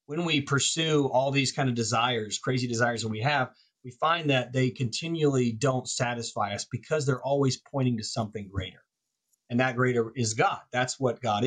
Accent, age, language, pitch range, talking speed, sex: American, 30-49, English, 120-150 Hz, 190 wpm, male